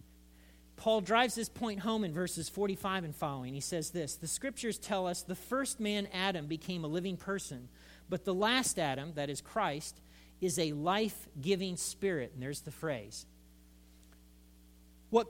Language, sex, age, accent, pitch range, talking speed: English, male, 40-59, American, 130-195 Hz, 160 wpm